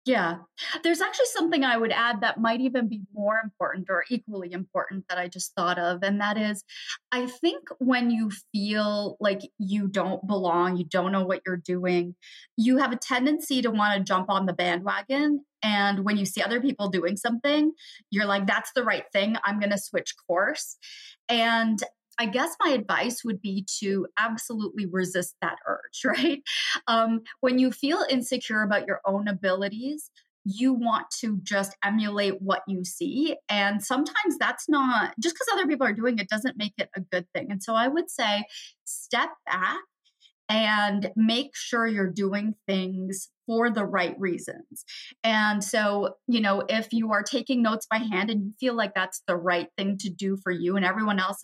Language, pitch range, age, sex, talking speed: English, 195-250 Hz, 30-49, female, 185 wpm